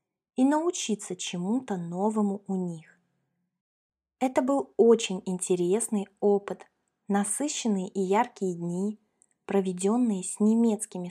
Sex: female